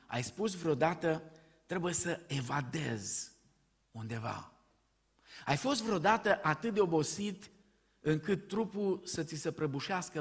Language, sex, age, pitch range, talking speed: Romanian, male, 50-69, 120-165 Hz, 110 wpm